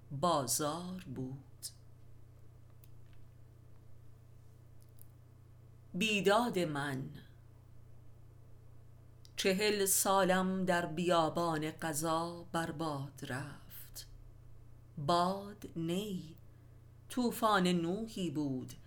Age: 50-69